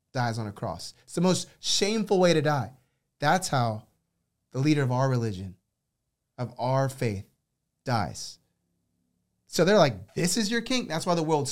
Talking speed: 170 wpm